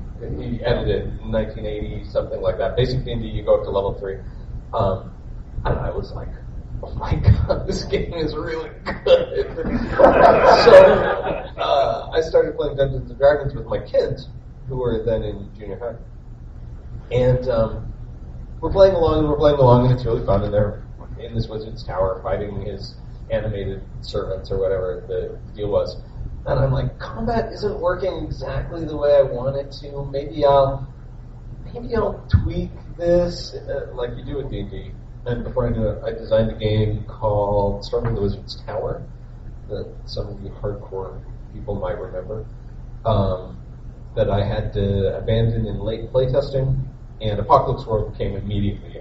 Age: 30-49